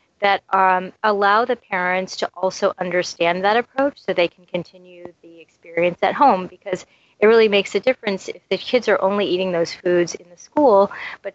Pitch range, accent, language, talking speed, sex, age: 175-205 Hz, American, English, 190 wpm, female, 30-49